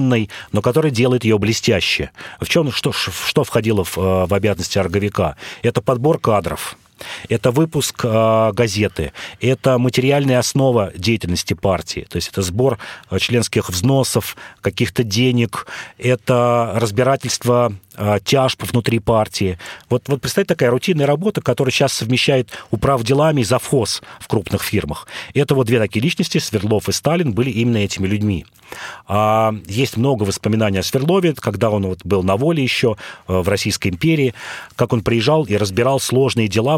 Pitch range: 100-130 Hz